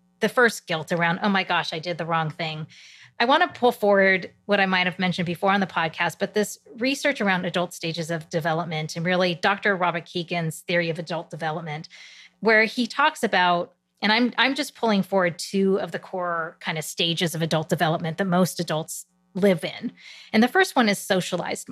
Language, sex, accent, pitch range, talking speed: English, female, American, 170-215 Hz, 205 wpm